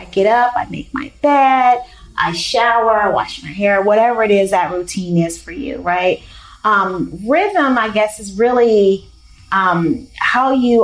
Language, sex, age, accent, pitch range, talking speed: English, female, 30-49, American, 175-215 Hz, 170 wpm